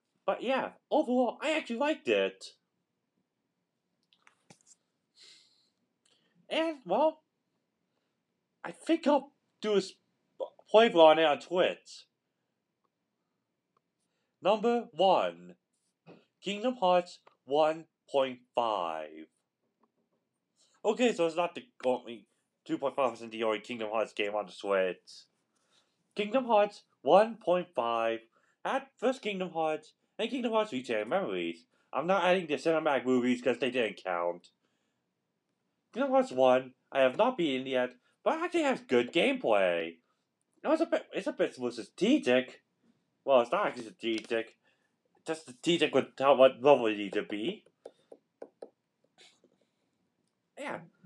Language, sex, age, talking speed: English, male, 30-49, 115 wpm